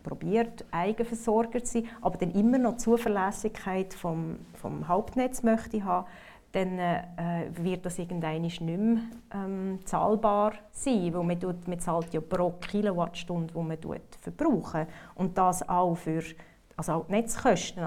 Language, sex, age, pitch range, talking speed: German, female, 30-49, 170-210 Hz, 140 wpm